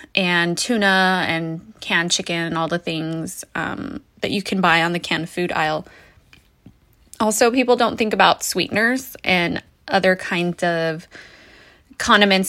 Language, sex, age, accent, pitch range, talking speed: English, female, 20-39, American, 175-205 Hz, 145 wpm